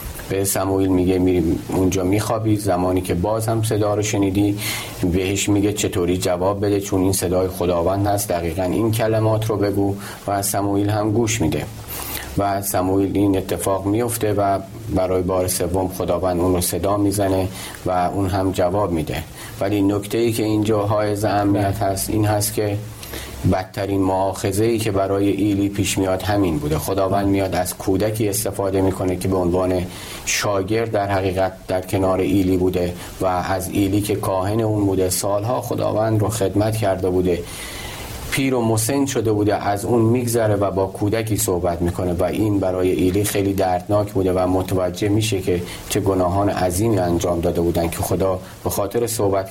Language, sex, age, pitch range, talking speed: Persian, male, 40-59, 95-105 Hz, 165 wpm